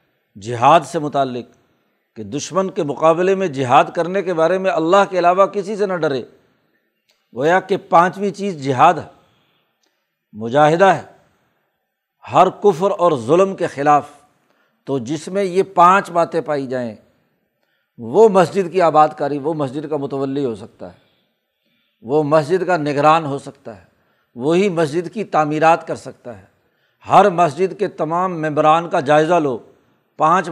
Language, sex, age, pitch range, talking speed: Urdu, male, 60-79, 150-180 Hz, 155 wpm